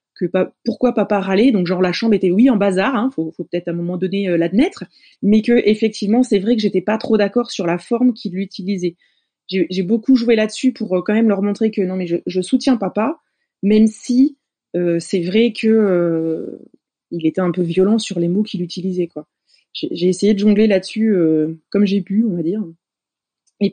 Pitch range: 180-230 Hz